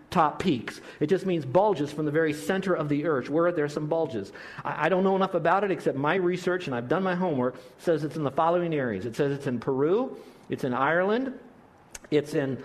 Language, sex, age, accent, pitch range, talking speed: English, male, 50-69, American, 130-170 Hz, 235 wpm